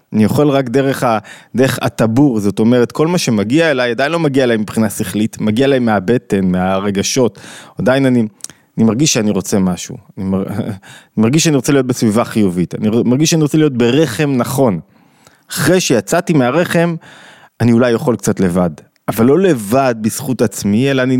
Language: Hebrew